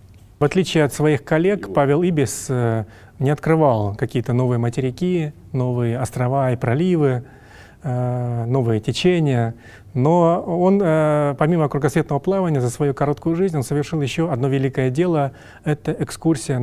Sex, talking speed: male, 130 wpm